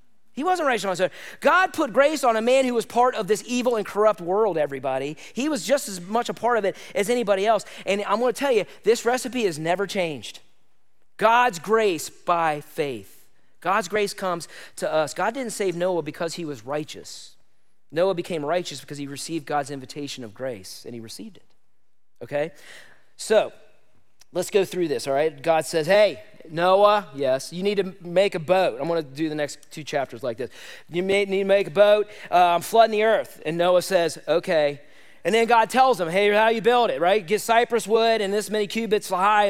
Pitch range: 165-225 Hz